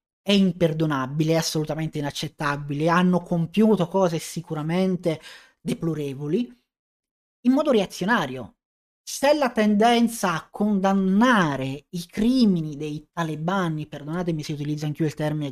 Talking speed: 110 wpm